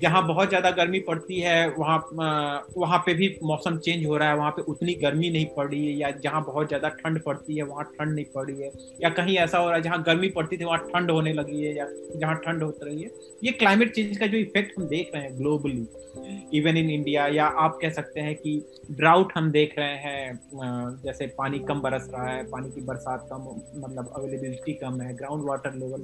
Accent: native